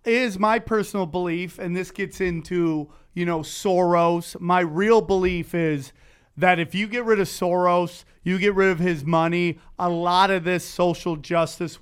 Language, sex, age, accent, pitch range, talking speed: English, male, 30-49, American, 165-190 Hz, 175 wpm